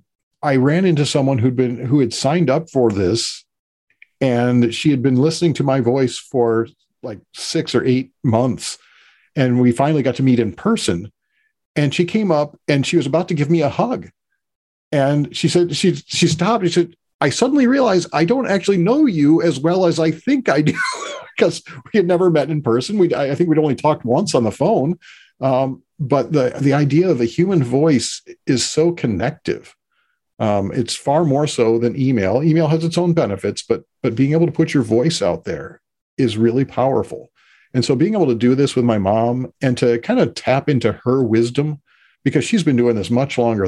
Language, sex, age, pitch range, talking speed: English, male, 50-69, 120-165 Hz, 205 wpm